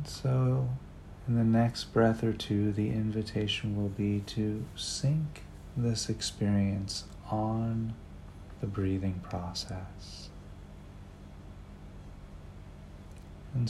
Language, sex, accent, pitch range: English, male, American, 80-105 Hz